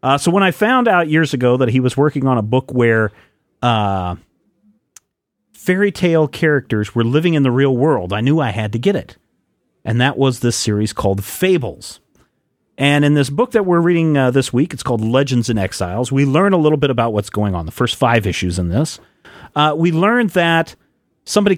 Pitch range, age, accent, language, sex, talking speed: 105-145 Hz, 40-59, American, English, male, 210 wpm